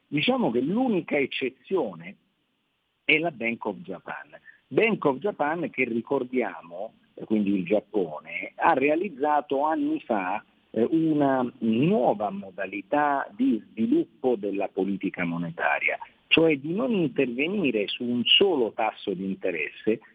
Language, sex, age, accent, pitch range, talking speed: Italian, male, 50-69, native, 105-165 Hz, 115 wpm